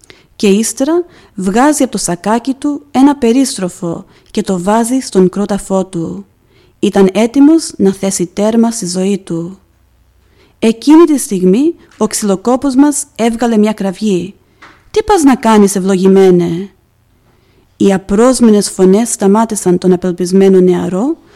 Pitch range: 180-235 Hz